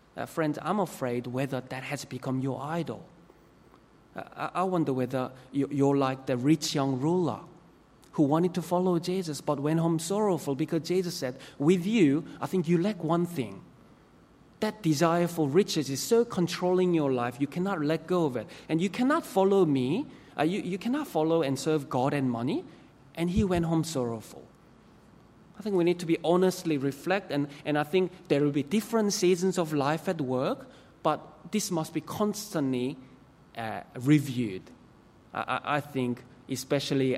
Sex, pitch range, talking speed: male, 130-175 Hz, 175 wpm